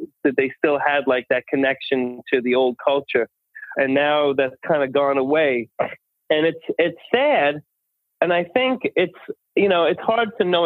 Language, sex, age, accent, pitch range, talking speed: English, male, 30-49, American, 130-170 Hz, 180 wpm